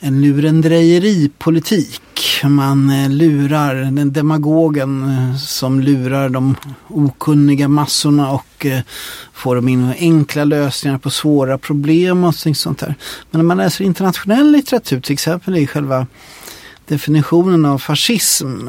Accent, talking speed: Swedish, 115 wpm